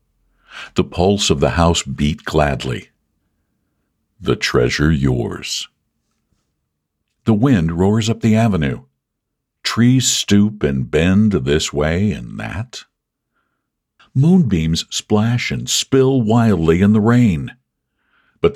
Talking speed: 105 wpm